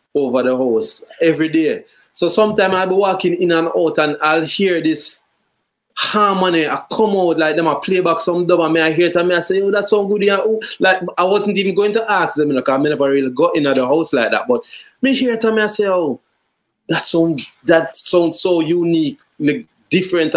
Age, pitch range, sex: 20-39, 135-185 Hz, male